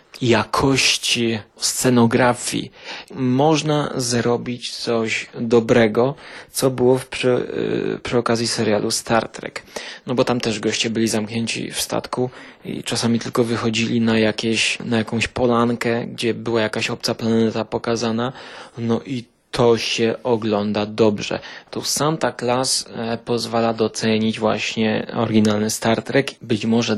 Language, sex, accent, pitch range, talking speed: Polish, male, native, 110-120 Hz, 120 wpm